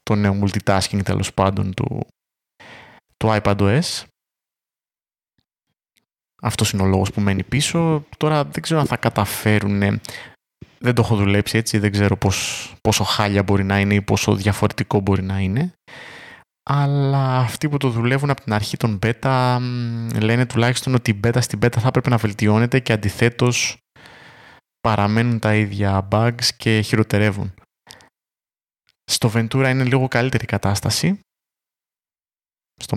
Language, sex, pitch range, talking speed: Greek, male, 100-130 Hz, 140 wpm